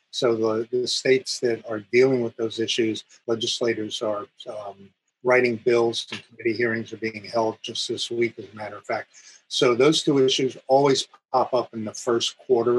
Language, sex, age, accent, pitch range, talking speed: English, male, 50-69, American, 110-130 Hz, 190 wpm